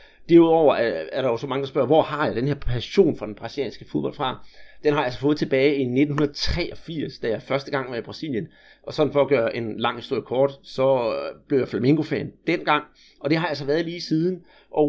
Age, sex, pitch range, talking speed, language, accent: 30-49, male, 140-175 Hz, 235 wpm, Danish, native